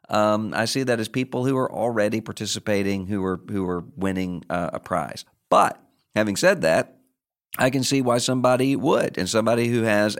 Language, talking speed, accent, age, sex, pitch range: English, 190 wpm, American, 50-69, male, 100-125 Hz